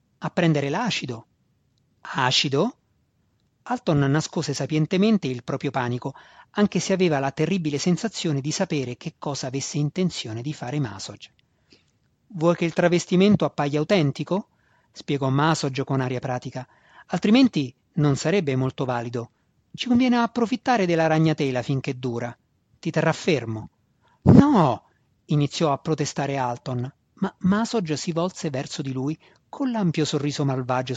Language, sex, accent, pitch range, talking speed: Italian, male, native, 130-185 Hz, 130 wpm